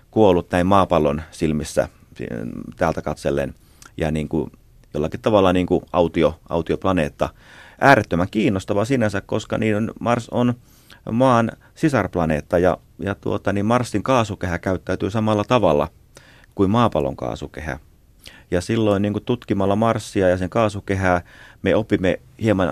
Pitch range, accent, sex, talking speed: 80-110 Hz, native, male, 125 wpm